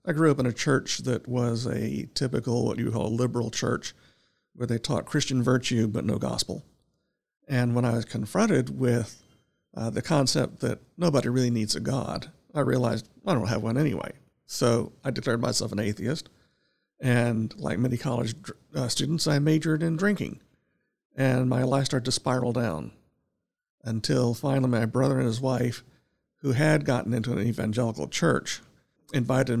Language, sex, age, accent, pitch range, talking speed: English, male, 50-69, American, 120-145 Hz, 170 wpm